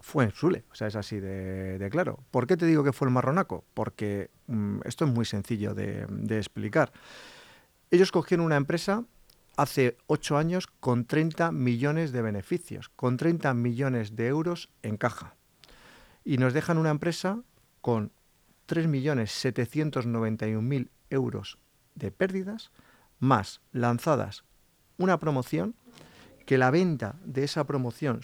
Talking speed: 140 wpm